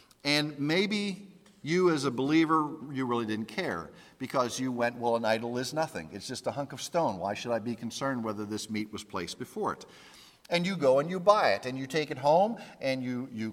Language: English